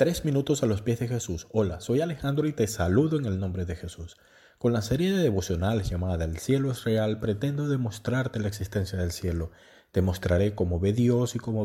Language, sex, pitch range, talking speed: Spanish, male, 95-120 Hz, 210 wpm